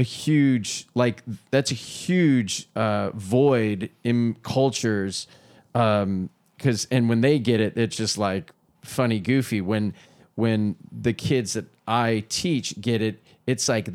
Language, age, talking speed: English, 30-49, 140 wpm